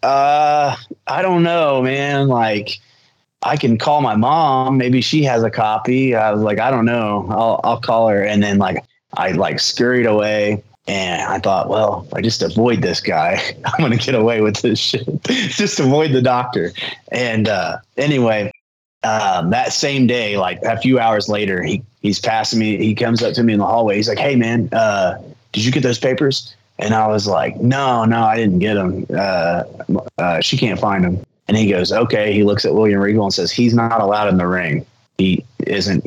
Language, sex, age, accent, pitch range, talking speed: Danish, male, 30-49, American, 100-130 Hz, 205 wpm